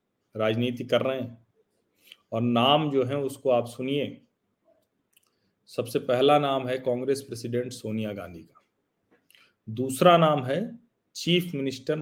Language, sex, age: Hindi, male, 40-59